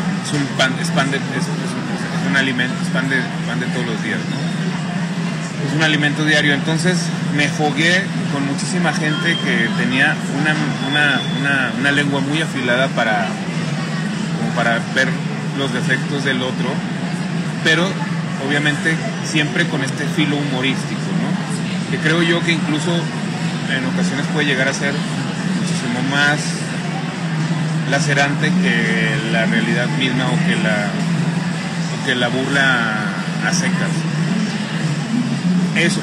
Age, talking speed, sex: 30-49, 120 wpm, male